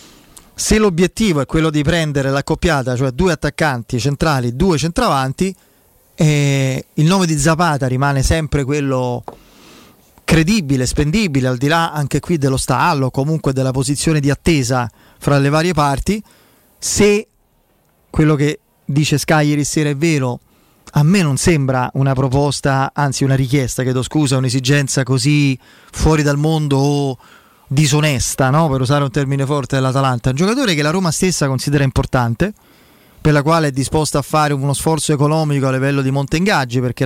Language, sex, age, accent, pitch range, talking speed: Italian, male, 30-49, native, 135-160 Hz, 155 wpm